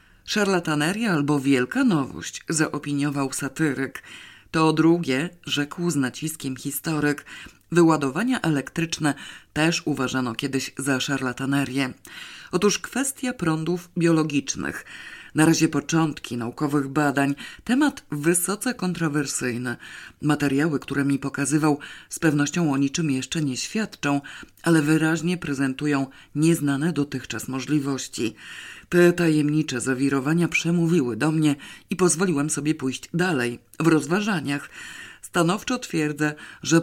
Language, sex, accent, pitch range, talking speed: Polish, female, native, 140-175 Hz, 105 wpm